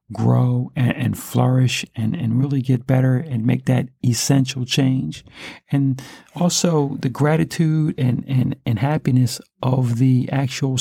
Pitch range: 120-140 Hz